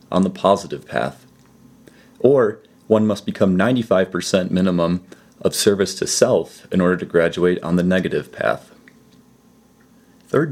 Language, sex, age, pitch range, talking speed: English, male, 30-49, 85-110 Hz, 130 wpm